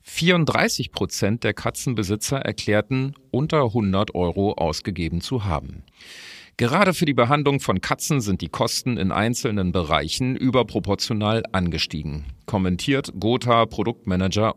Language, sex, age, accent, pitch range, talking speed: German, male, 40-59, German, 90-125 Hz, 105 wpm